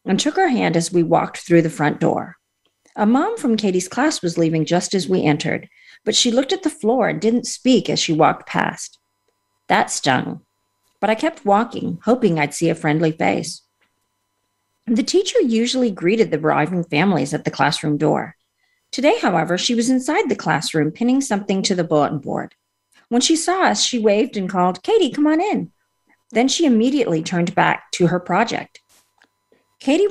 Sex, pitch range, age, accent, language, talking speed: female, 160-245 Hz, 40-59, American, English, 185 wpm